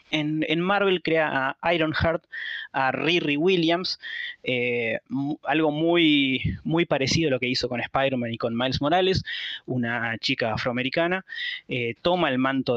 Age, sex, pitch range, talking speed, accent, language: 20-39, male, 125-165 Hz, 150 wpm, Argentinian, Spanish